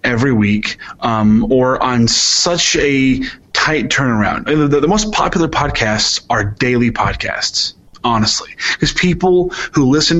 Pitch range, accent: 110-140 Hz, American